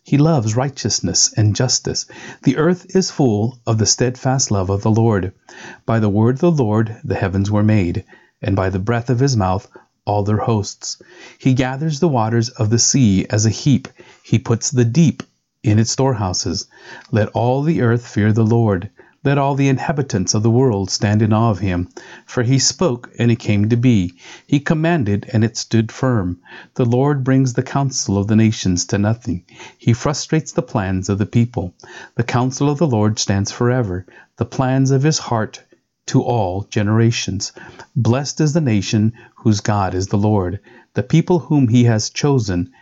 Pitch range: 105-130 Hz